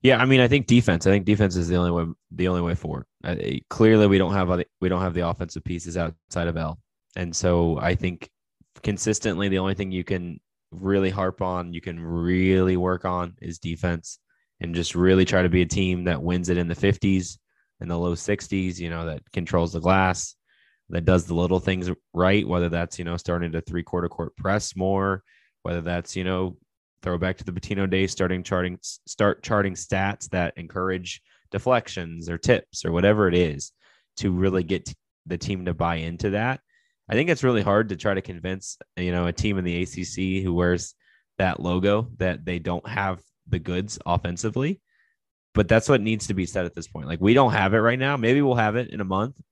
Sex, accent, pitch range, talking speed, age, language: male, American, 85-105 Hz, 215 wpm, 20-39, English